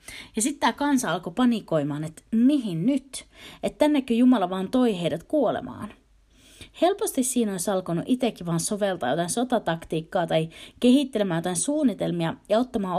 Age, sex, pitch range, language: 30-49, female, 170-260 Hz, Finnish